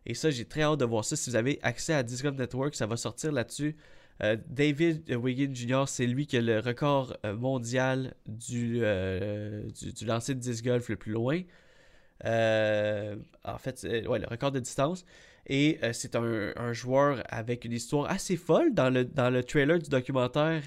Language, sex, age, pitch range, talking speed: French, male, 20-39, 110-140 Hz, 195 wpm